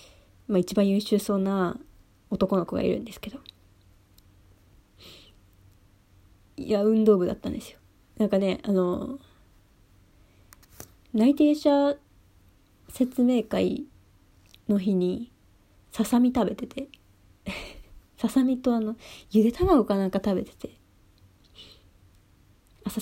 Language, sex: Japanese, female